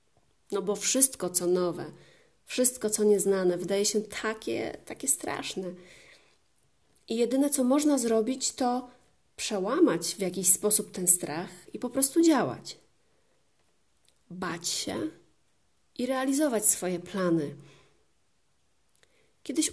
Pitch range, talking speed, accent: 185-250 Hz, 110 wpm, native